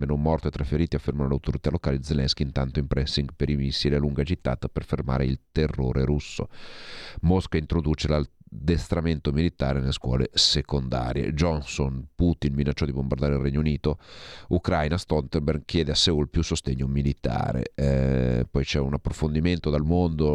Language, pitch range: Italian, 70-85 Hz